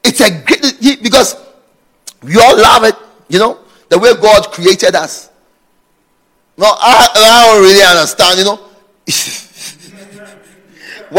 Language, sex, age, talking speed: English, male, 40-59, 125 wpm